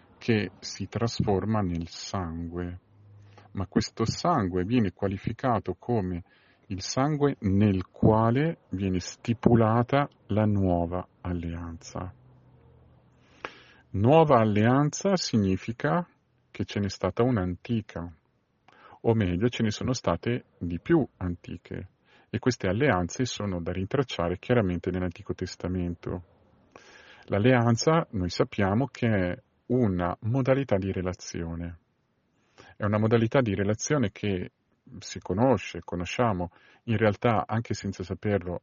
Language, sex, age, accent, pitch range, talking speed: Italian, male, 40-59, native, 90-120 Hz, 105 wpm